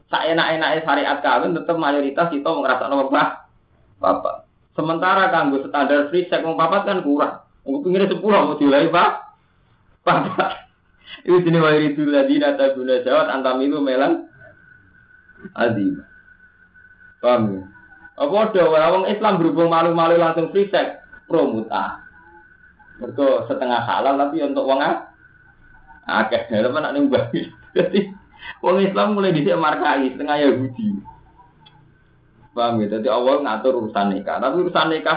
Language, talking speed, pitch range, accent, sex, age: Indonesian, 130 wpm, 130-220 Hz, native, male, 30-49